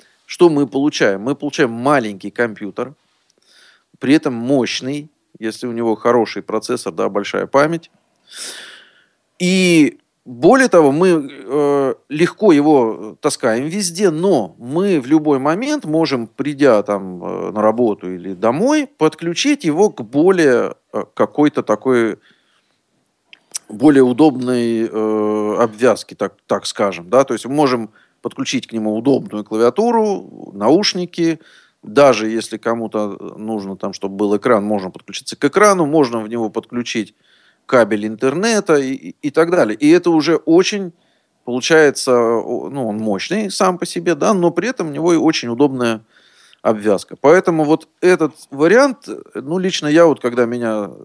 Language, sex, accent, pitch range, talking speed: Russian, male, native, 115-175 Hz, 135 wpm